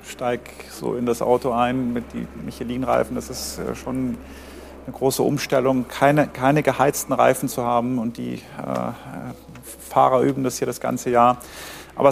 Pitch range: 125-145 Hz